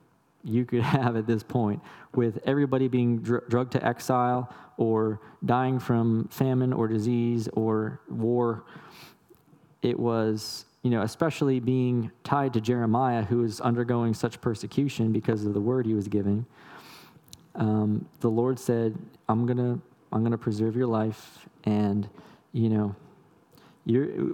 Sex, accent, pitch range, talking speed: male, American, 110-130 Hz, 140 wpm